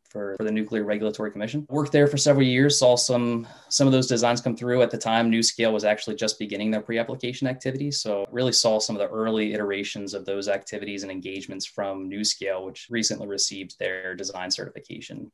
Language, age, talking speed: English, 20-39, 195 wpm